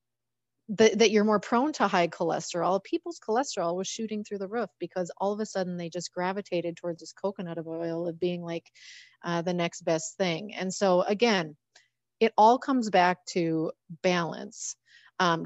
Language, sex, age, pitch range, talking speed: English, female, 30-49, 170-210 Hz, 170 wpm